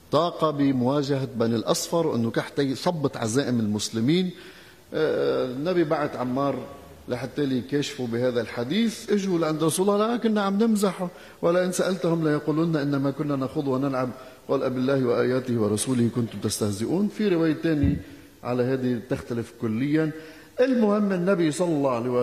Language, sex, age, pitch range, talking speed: Arabic, male, 50-69, 115-160 Hz, 135 wpm